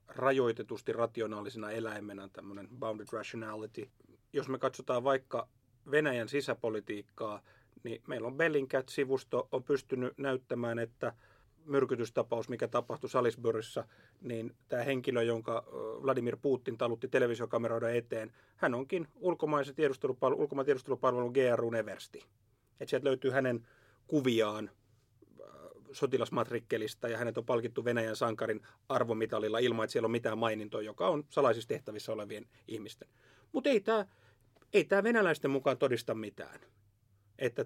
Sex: male